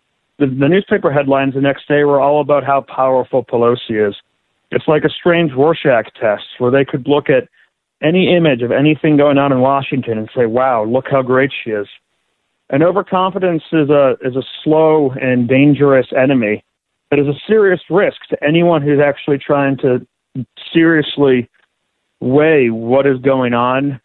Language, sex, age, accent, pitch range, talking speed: English, male, 40-59, American, 130-150 Hz, 170 wpm